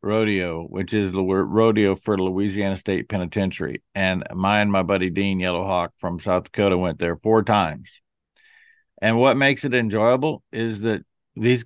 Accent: American